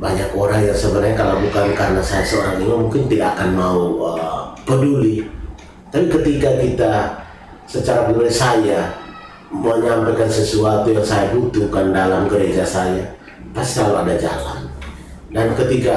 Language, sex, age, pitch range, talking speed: Indonesian, male, 30-49, 85-110 Hz, 140 wpm